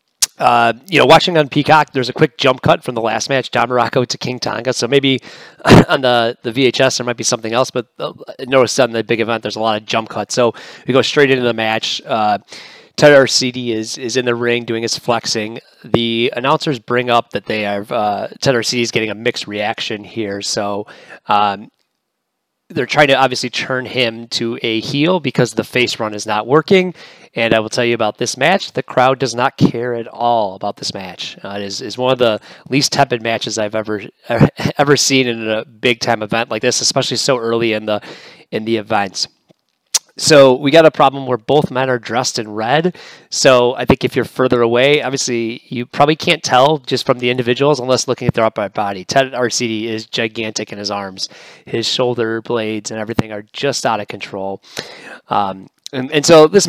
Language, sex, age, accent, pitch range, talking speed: English, male, 30-49, American, 115-135 Hz, 210 wpm